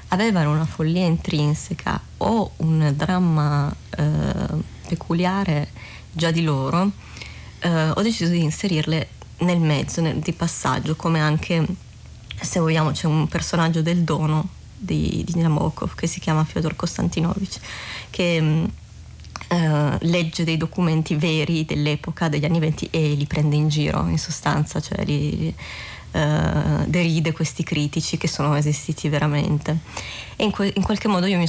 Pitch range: 150-175 Hz